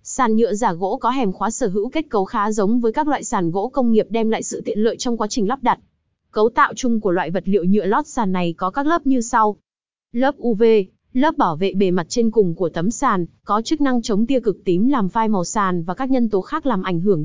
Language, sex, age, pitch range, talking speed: Vietnamese, female, 20-39, 195-255 Hz, 270 wpm